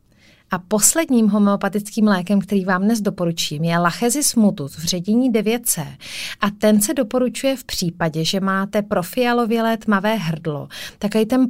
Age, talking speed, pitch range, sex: 30-49, 140 wpm, 190-235 Hz, female